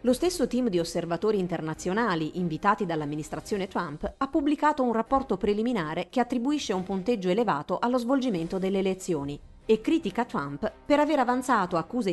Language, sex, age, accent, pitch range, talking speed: Italian, female, 40-59, native, 170-245 Hz, 150 wpm